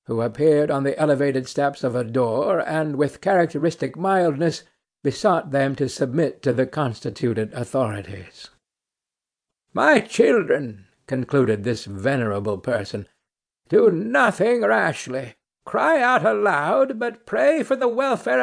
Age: 60-79